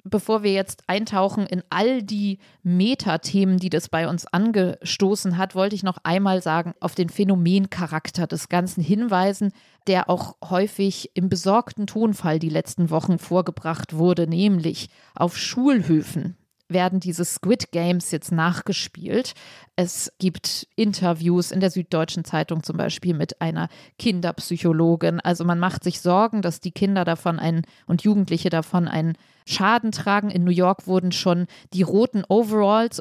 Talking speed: 145 wpm